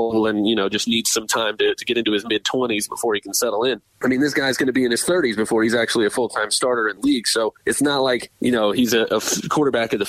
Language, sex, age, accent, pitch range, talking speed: English, male, 30-49, American, 105-130 Hz, 285 wpm